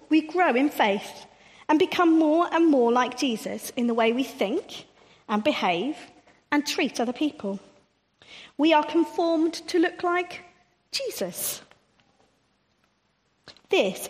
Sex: female